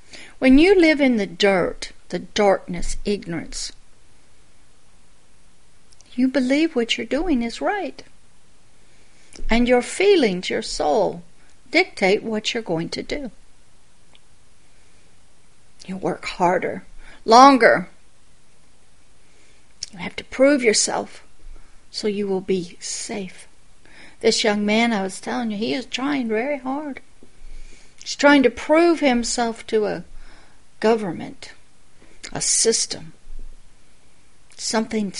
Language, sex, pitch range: English, female, 205-275 Hz